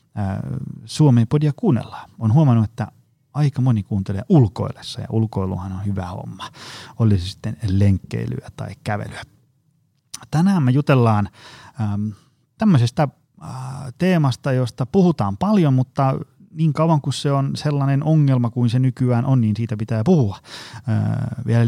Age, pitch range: 30-49, 110-140 Hz